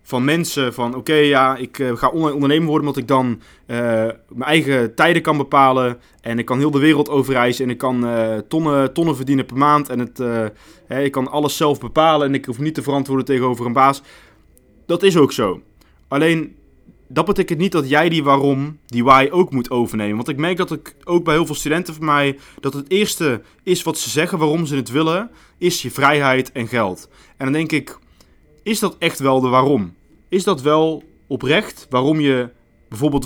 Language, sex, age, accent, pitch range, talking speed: Dutch, male, 20-39, Dutch, 120-155 Hz, 210 wpm